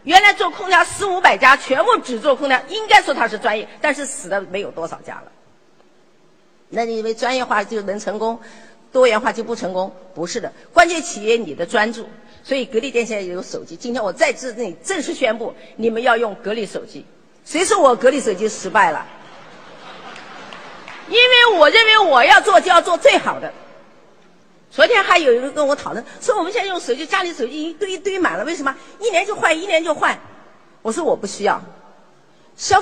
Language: Chinese